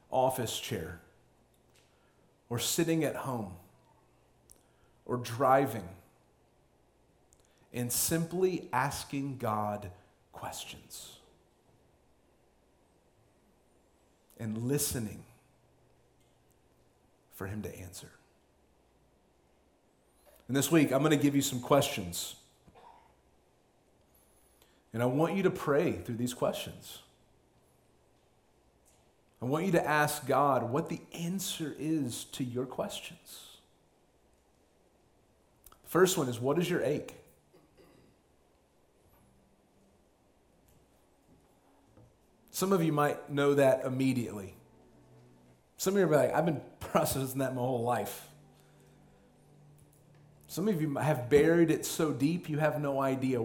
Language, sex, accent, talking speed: English, male, American, 100 wpm